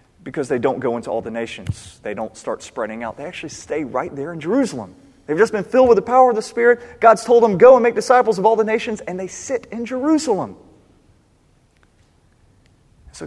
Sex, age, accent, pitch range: male, 30-49, American, 110-155 Hz